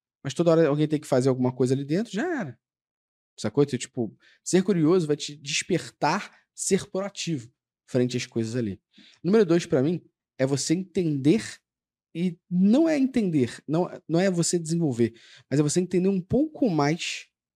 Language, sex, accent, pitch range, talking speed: Portuguese, male, Brazilian, 130-190 Hz, 170 wpm